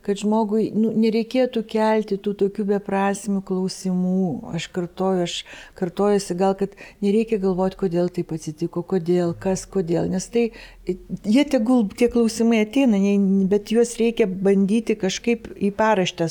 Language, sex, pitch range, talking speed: English, female, 185-220 Hz, 135 wpm